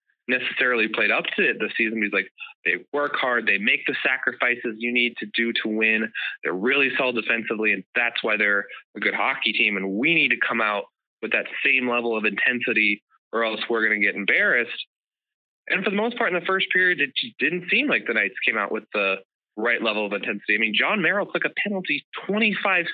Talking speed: 220 wpm